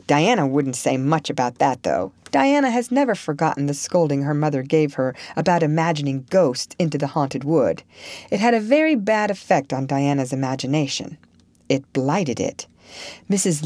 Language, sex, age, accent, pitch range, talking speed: English, female, 40-59, American, 145-200 Hz, 165 wpm